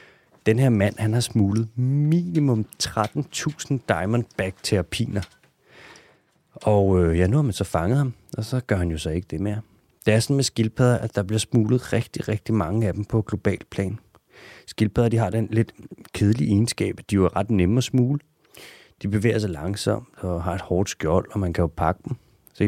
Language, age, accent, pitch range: Danish, 30-49, native, 90-115 Hz